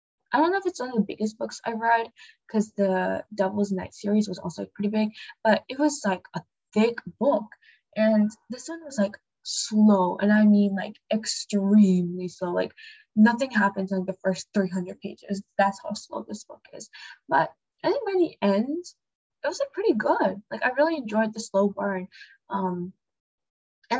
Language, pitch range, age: English, 185-225 Hz, 10-29